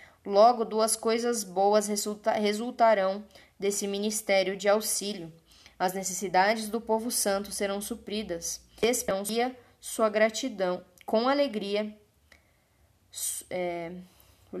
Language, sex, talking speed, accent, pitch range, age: Portuguese, female, 105 wpm, Brazilian, 185-220 Hz, 10-29